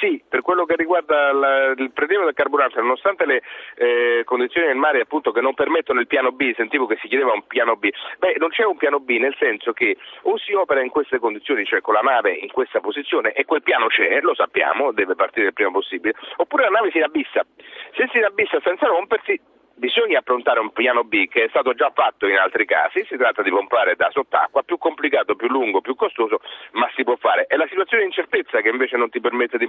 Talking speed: 230 wpm